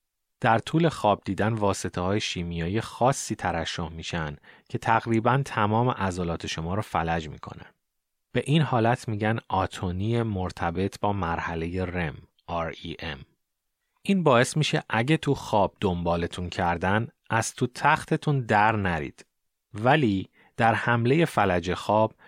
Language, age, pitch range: Persian, 30-49, 85-115 Hz